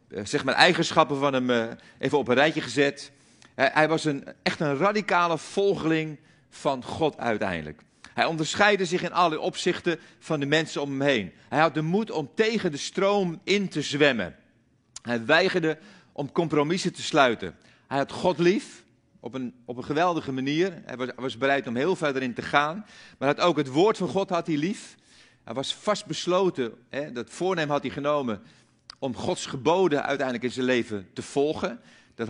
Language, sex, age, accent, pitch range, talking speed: Dutch, male, 40-59, Dutch, 125-170 Hz, 180 wpm